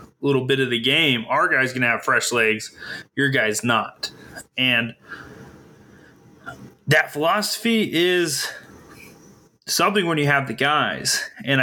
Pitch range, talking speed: 120-140 Hz, 135 wpm